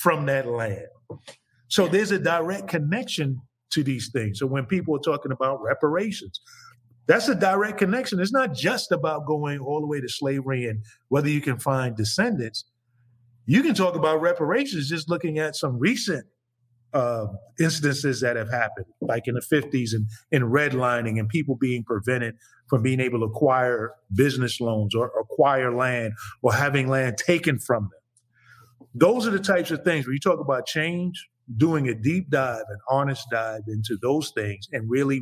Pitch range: 120-150 Hz